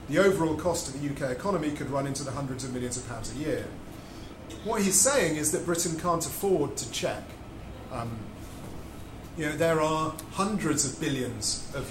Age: 30-49